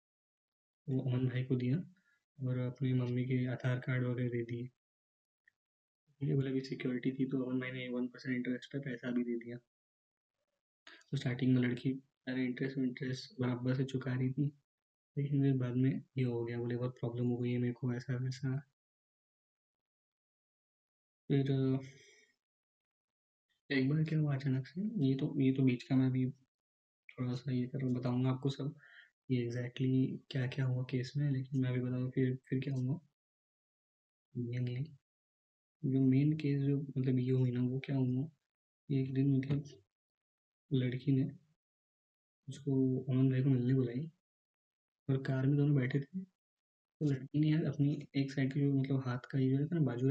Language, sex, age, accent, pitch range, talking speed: Hindi, male, 20-39, native, 125-140 Hz, 165 wpm